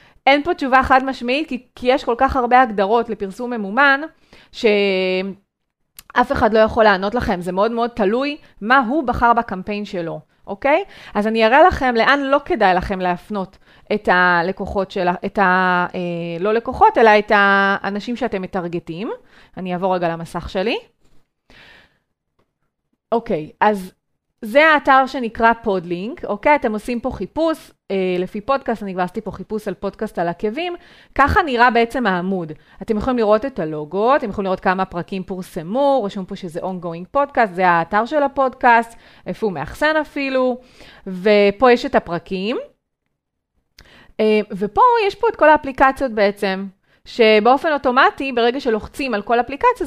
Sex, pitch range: female, 190-265 Hz